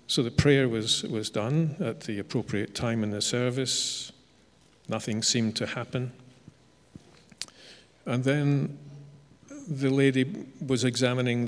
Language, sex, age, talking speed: English, male, 50-69, 120 wpm